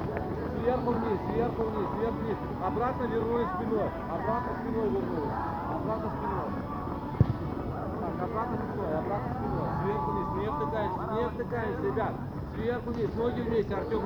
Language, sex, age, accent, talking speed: Russian, male, 40-59, native, 135 wpm